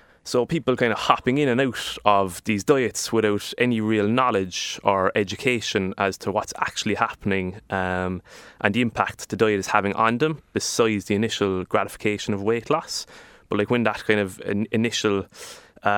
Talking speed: 175 wpm